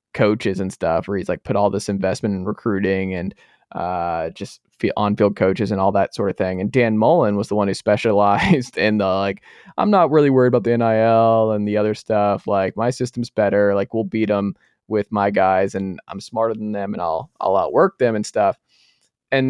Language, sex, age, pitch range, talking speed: English, male, 20-39, 100-115 Hz, 210 wpm